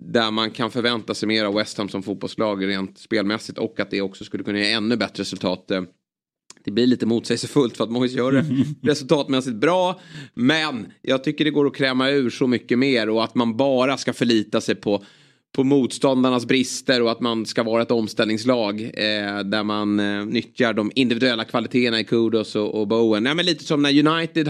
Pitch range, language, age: 105-130 Hz, Swedish, 30-49